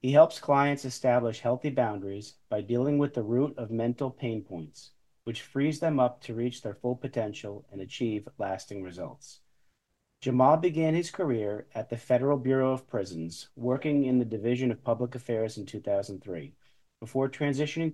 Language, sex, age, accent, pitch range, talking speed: English, male, 40-59, American, 110-135 Hz, 165 wpm